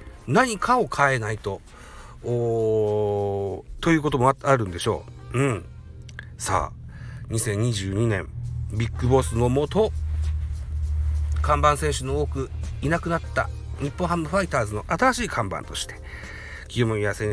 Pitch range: 100-140 Hz